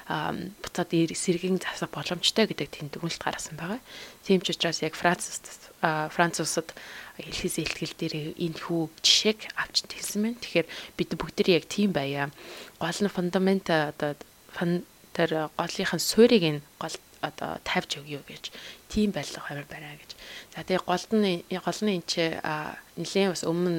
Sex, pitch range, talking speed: female, 155-185 Hz, 70 wpm